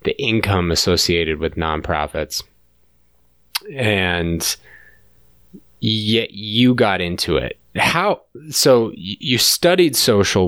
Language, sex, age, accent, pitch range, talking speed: English, male, 20-39, American, 85-105 Hz, 90 wpm